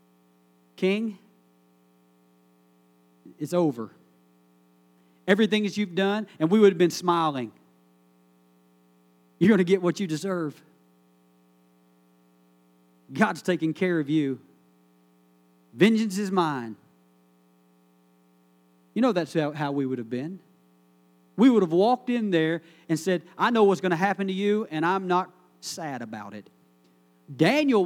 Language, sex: English, male